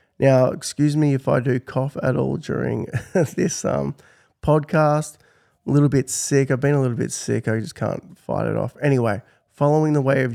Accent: Australian